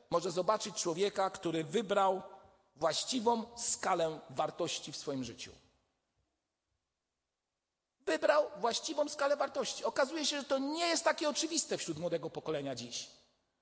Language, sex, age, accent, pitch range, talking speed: Polish, male, 40-59, native, 170-255 Hz, 120 wpm